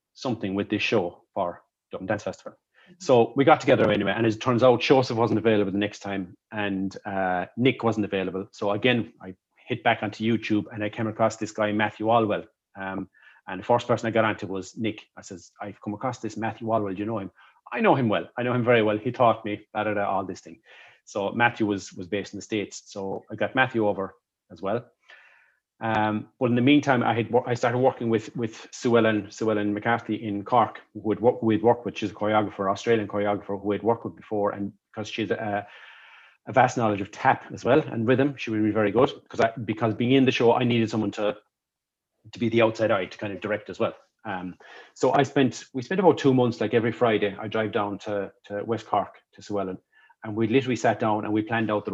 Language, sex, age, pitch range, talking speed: English, male, 30-49, 100-115 Hz, 240 wpm